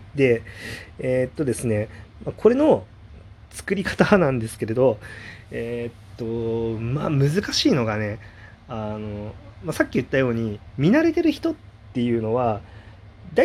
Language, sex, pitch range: Japanese, male, 105-160 Hz